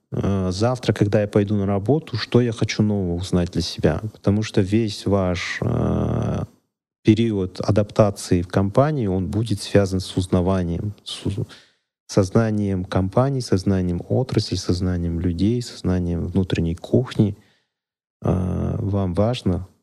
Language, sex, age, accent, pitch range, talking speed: Russian, male, 30-49, native, 95-115 Hz, 115 wpm